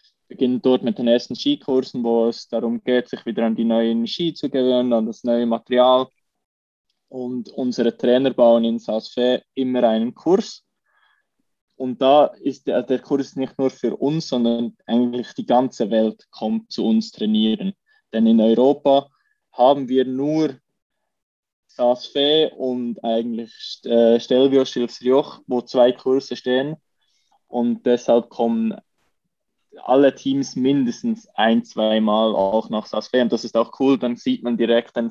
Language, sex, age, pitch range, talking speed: German, male, 20-39, 115-135 Hz, 145 wpm